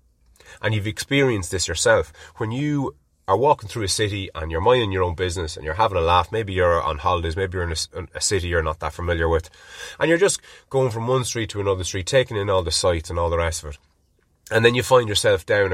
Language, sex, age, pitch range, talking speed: English, male, 30-49, 85-130 Hz, 250 wpm